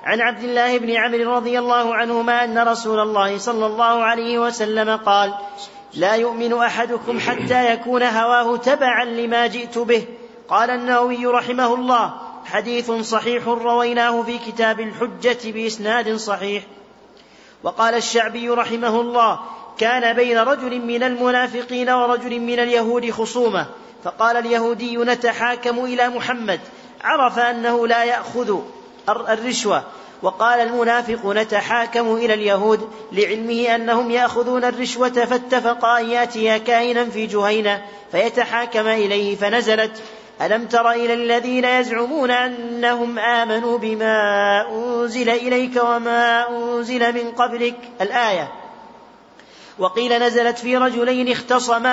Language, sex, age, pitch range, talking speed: Arabic, male, 40-59, 225-240 Hz, 115 wpm